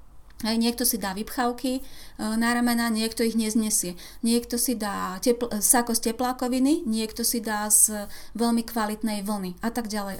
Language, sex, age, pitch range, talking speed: Slovak, female, 30-49, 200-240 Hz, 160 wpm